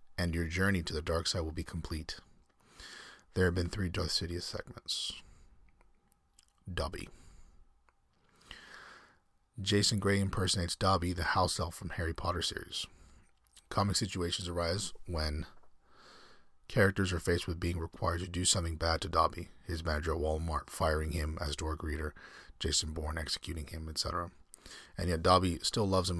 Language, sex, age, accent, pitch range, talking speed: English, male, 30-49, American, 80-90 Hz, 150 wpm